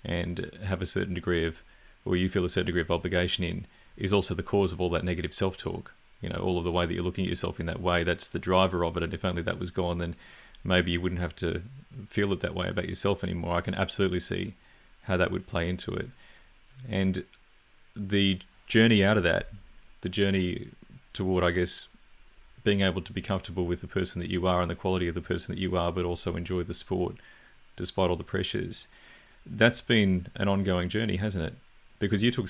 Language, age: English, 30-49